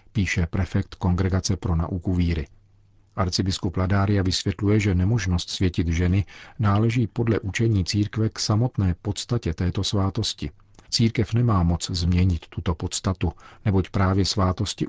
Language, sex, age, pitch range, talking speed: Czech, male, 40-59, 90-105 Hz, 125 wpm